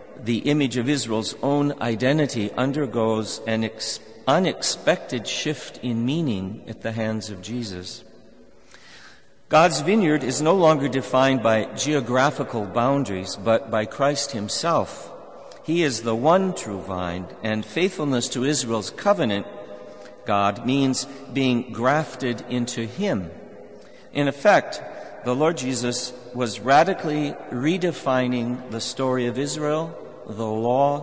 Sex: male